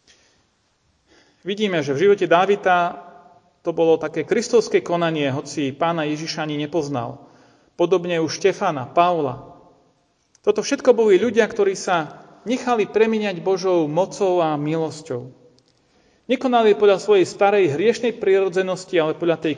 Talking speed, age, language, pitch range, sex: 125 wpm, 40-59, Slovak, 160-210 Hz, male